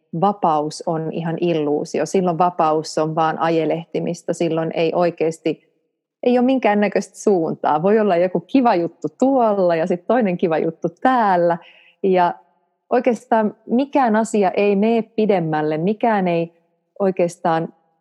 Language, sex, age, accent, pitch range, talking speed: Finnish, female, 30-49, native, 160-195 Hz, 125 wpm